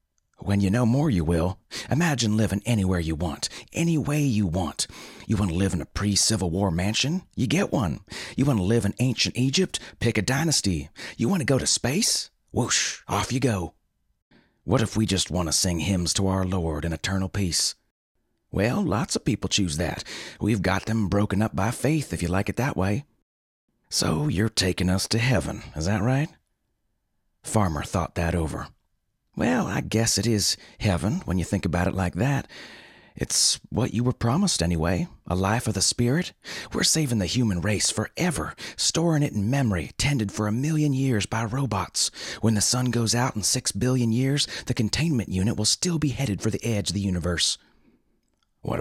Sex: male